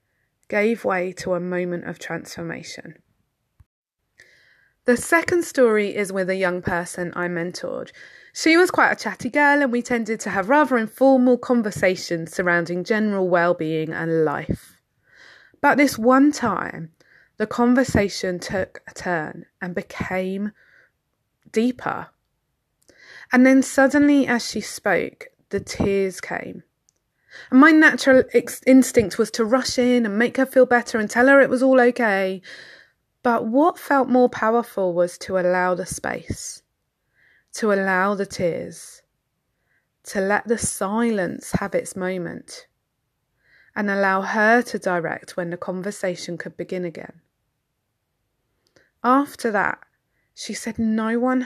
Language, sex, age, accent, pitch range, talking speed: English, female, 20-39, British, 185-255 Hz, 135 wpm